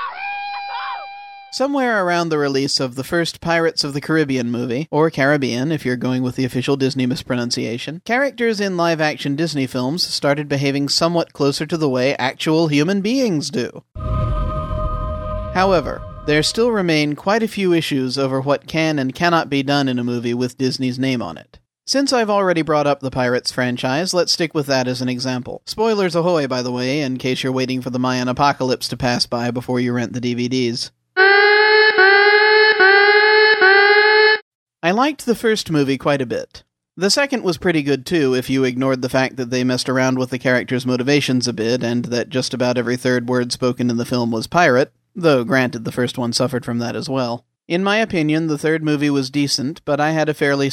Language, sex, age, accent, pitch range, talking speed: English, male, 40-59, American, 125-170 Hz, 190 wpm